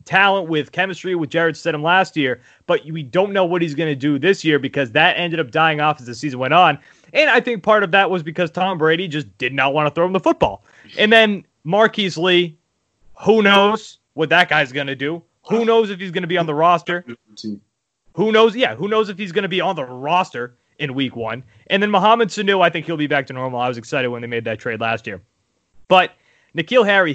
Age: 30-49